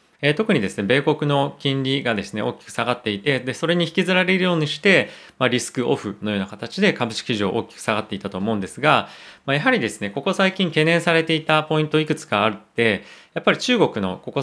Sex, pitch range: male, 110-155 Hz